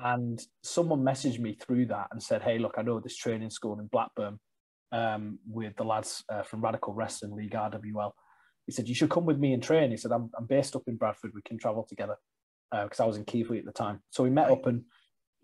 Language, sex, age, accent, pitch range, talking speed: English, male, 20-39, British, 110-130 Hz, 240 wpm